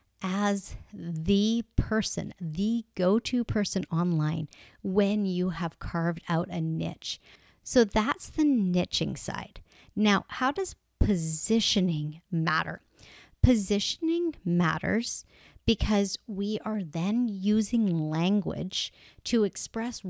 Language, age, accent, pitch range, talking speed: English, 40-59, American, 170-225 Hz, 100 wpm